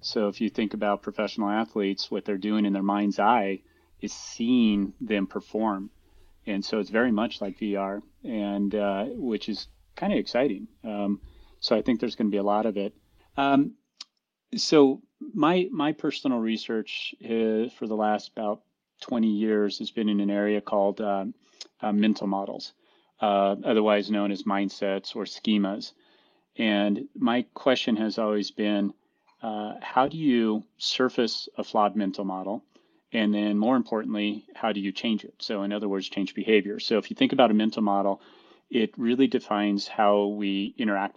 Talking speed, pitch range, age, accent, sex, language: 170 wpm, 100-110 Hz, 30-49, American, male, English